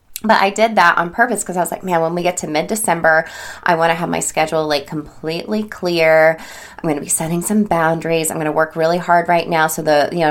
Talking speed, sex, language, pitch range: 250 wpm, female, English, 155-190 Hz